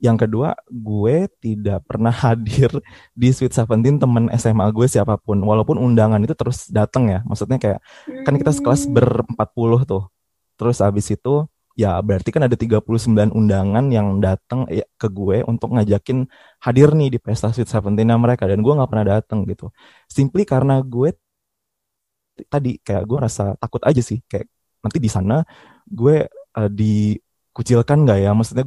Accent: Indonesian